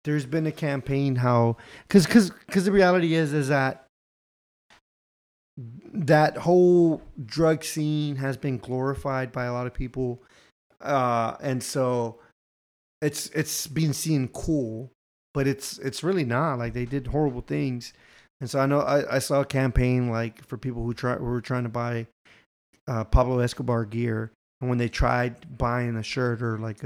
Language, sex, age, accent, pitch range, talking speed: English, male, 30-49, American, 120-140 Hz, 170 wpm